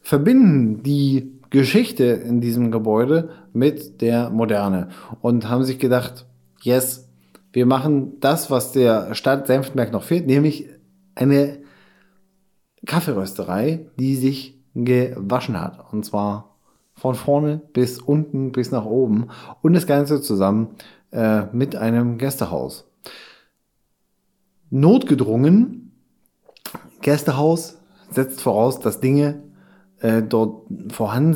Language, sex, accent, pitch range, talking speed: German, male, German, 115-150 Hz, 105 wpm